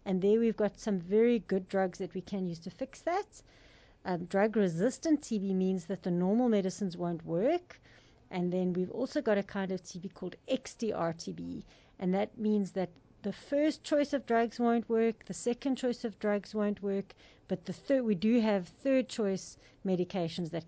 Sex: female